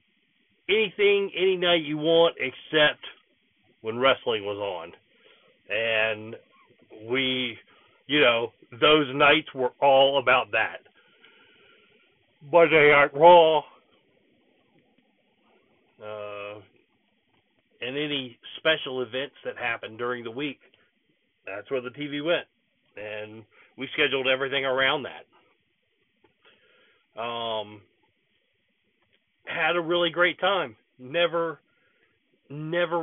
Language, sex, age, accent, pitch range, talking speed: English, male, 40-59, American, 125-160 Hz, 95 wpm